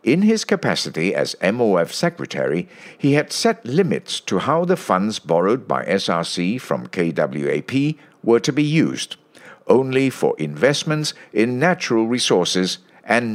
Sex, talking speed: male, 135 wpm